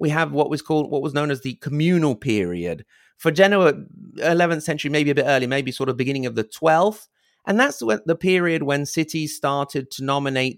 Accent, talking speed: British, 205 wpm